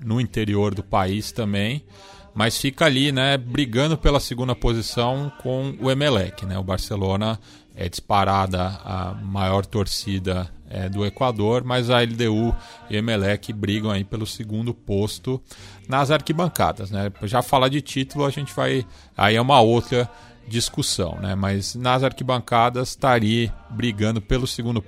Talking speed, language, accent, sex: 150 wpm, Portuguese, Brazilian, male